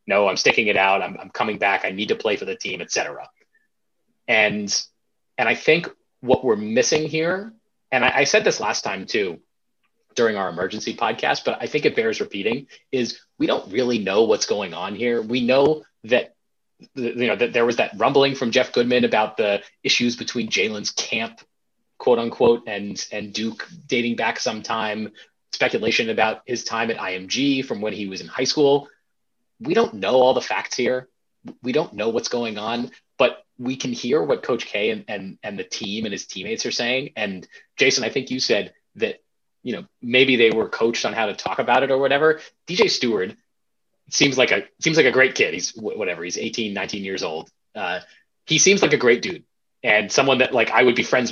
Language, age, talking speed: English, 30-49, 205 wpm